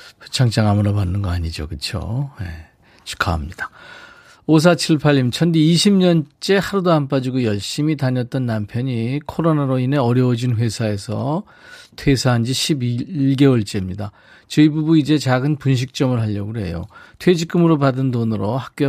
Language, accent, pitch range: Korean, native, 110-155 Hz